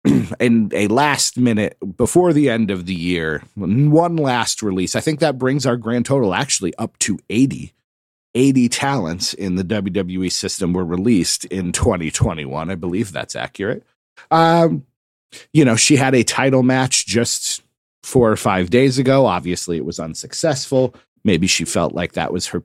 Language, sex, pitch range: English, male, 90-130 Hz